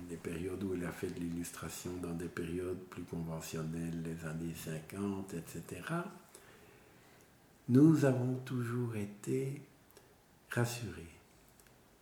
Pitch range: 100-130 Hz